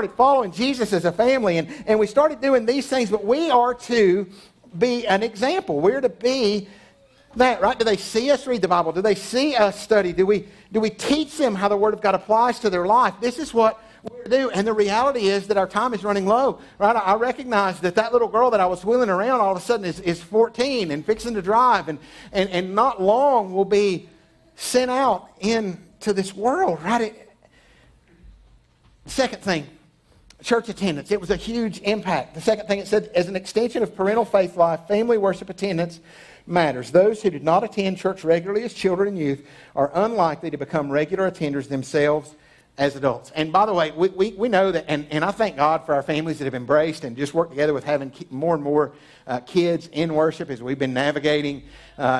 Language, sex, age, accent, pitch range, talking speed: English, male, 50-69, American, 155-220 Hz, 220 wpm